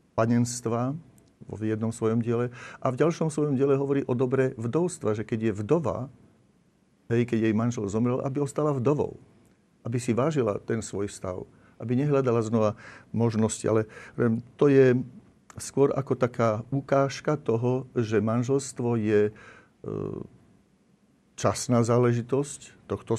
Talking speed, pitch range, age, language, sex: 125 wpm, 110-130 Hz, 50-69, Slovak, male